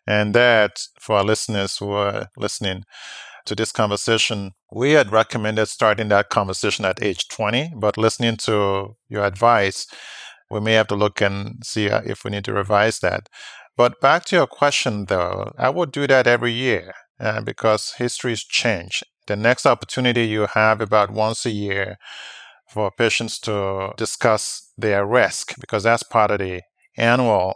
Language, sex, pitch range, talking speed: English, male, 100-115 Hz, 170 wpm